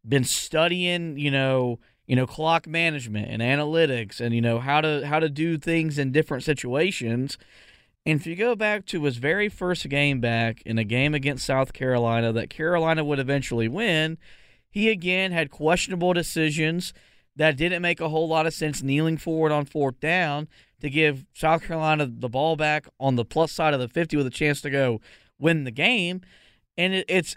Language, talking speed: English, 190 wpm